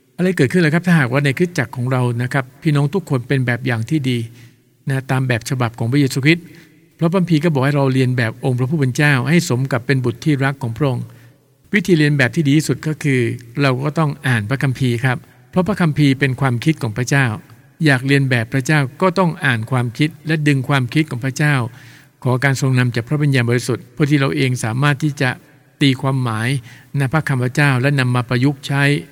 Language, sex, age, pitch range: English, male, 60-79, 125-145 Hz